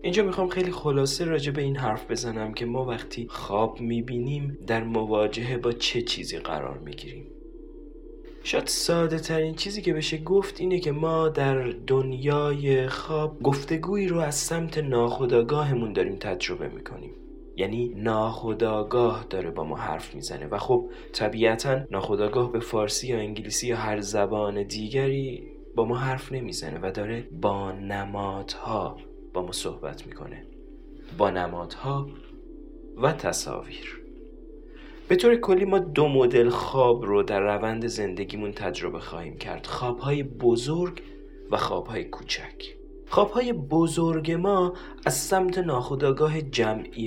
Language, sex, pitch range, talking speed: Persian, male, 115-160 Hz, 130 wpm